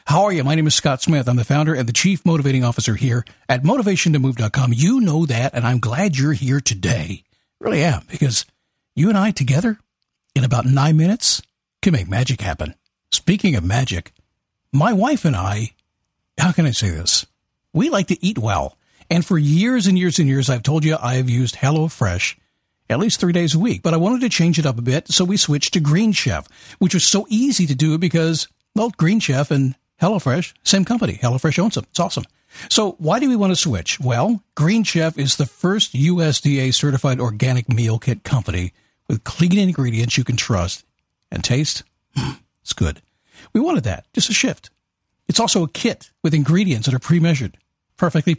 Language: English